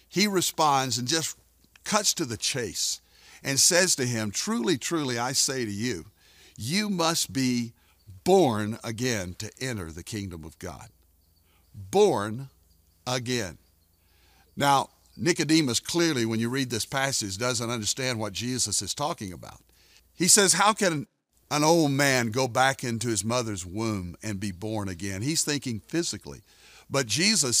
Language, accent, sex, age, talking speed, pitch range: English, American, male, 60-79, 150 wpm, 100-140 Hz